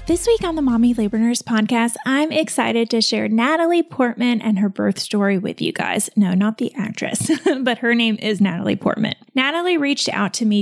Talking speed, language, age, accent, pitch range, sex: 205 wpm, English, 30-49, American, 220-300 Hz, female